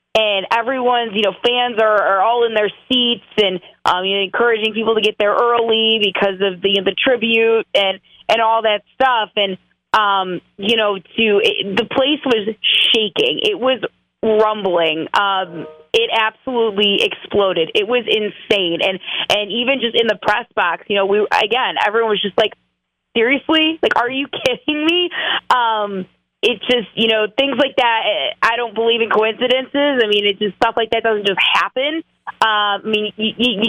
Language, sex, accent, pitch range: English, female, American, 205-245 Hz